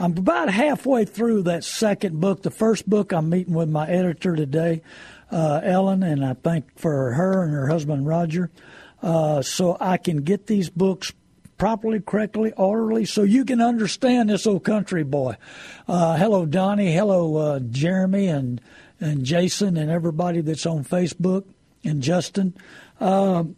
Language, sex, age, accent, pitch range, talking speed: English, male, 60-79, American, 165-210 Hz, 160 wpm